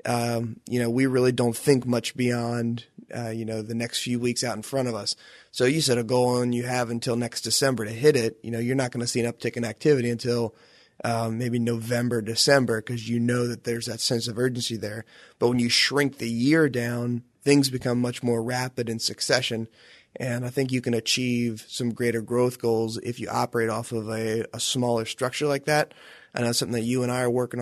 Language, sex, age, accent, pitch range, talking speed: English, male, 20-39, American, 115-125 Hz, 230 wpm